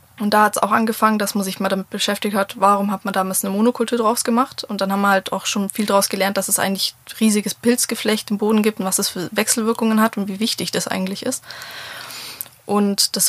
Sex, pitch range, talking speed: female, 195-220 Hz, 240 wpm